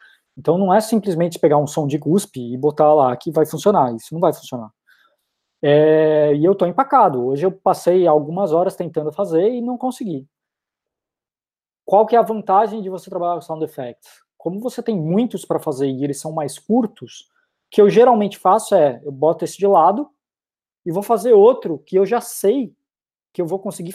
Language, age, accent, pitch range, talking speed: Portuguese, 20-39, Brazilian, 155-200 Hz, 195 wpm